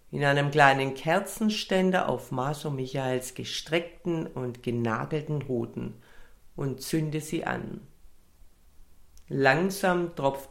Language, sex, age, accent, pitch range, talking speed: German, female, 60-79, German, 130-185 Hz, 95 wpm